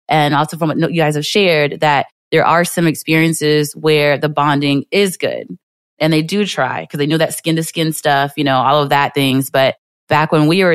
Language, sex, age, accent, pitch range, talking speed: English, female, 20-39, American, 145-170 Hz, 220 wpm